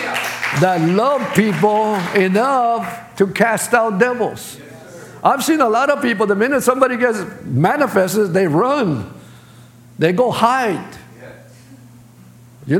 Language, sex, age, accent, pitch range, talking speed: English, male, 50-69, American, 175-245 Hz, 115 wpm